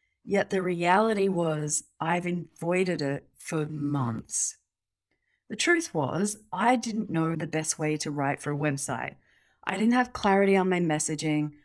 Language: English